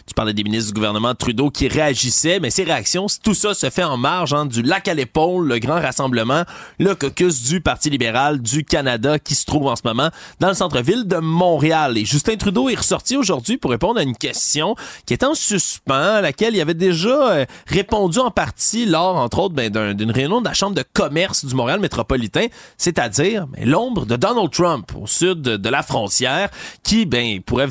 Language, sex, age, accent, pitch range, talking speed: French, male, 30-49, Canadian, 130-195 Hz, 210 wpm